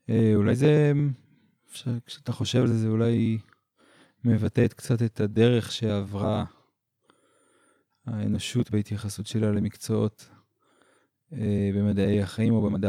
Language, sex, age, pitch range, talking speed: Hebrew, male, 20-39, 100-115 Hz, 100 wpm